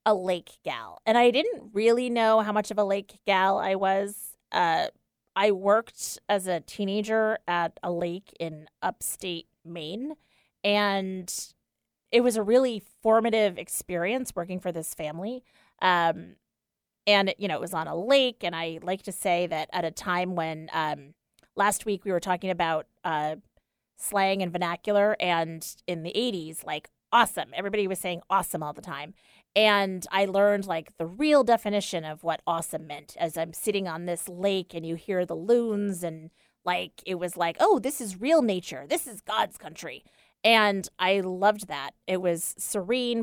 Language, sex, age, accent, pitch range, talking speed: English, female, 30-49, American, 170-210 Hz, 175 wpm